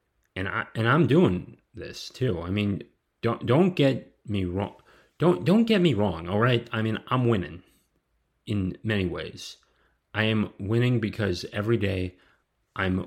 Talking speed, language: 155 wpm, English